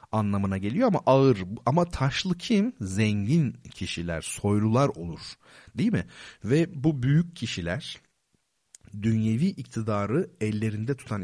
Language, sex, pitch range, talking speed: Turkish, male, 100-145 Hz, 110 wpm